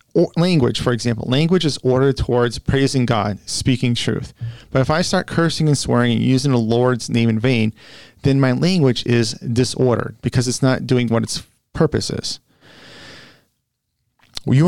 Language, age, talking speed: English, 40-59, 165 wpm